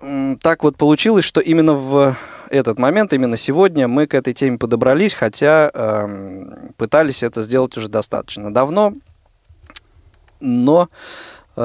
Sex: male